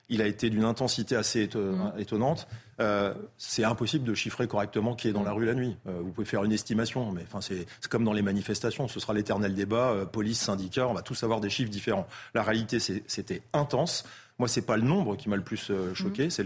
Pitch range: 105-125 Hz